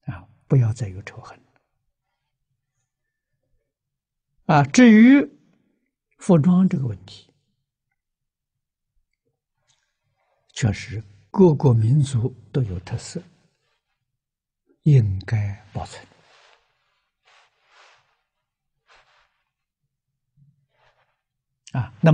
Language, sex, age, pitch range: Chinese, male, 60-79, 120-145 Hz